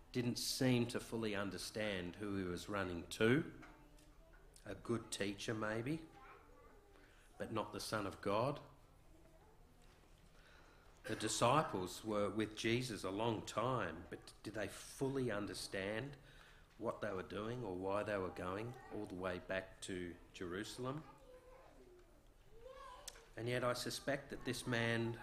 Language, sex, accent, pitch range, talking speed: English, male, Australian, 95-120 Hz, 130 wpm